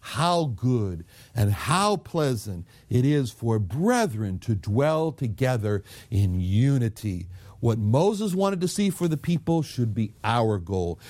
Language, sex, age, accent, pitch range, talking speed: English, male, 60-79, American, 110-155 Hz, 140 wpm